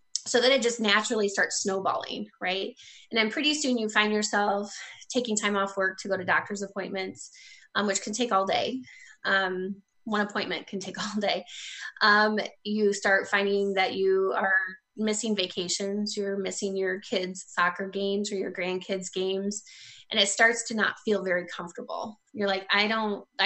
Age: 20-39